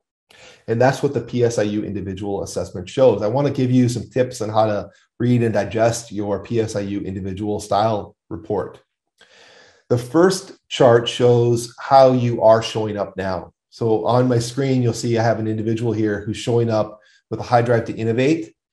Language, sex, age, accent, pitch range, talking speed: English, male, 40-59, American, 110-130 Hz, 180 wpm